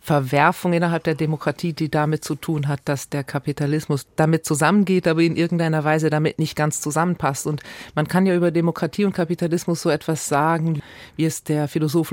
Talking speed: 185 wpm